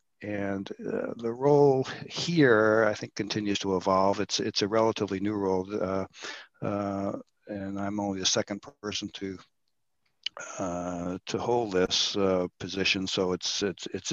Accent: American